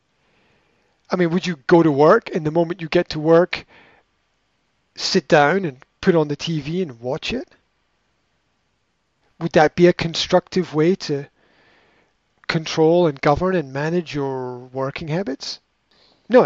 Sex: male